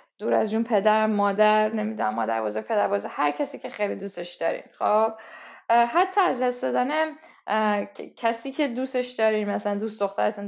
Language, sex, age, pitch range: Persian, female, 10-29, 215-285 Hz